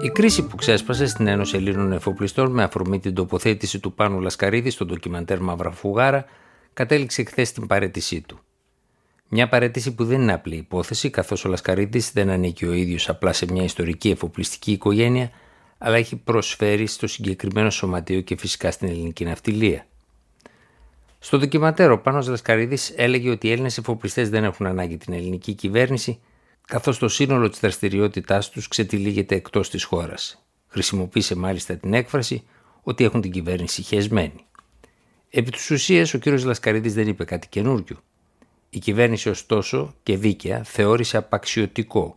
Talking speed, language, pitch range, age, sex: 150 wpm, Greek, 95-120 Hz, 60-79, male